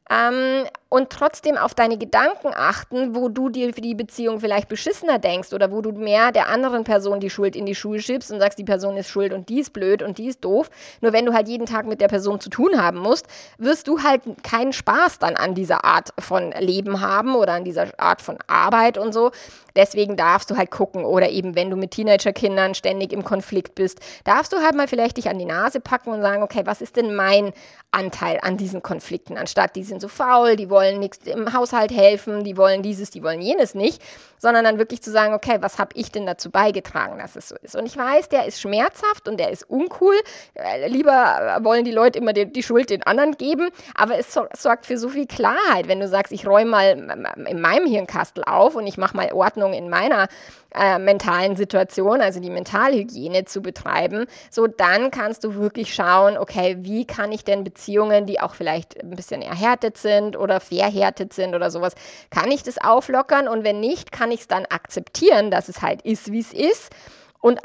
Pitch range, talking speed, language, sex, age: 200-250 Hz, 215 wpm, German, female, 20-39